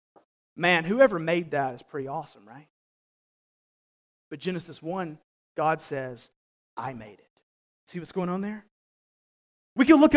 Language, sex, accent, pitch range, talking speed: English, male, American, 155-220 Hz, 140 wpm